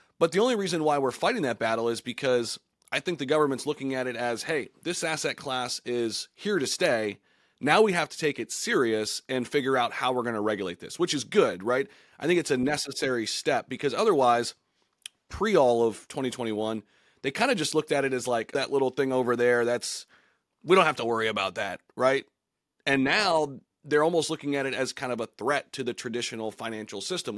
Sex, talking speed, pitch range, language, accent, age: male, 215 wpm, 120-150 Hz, English, American, 30-49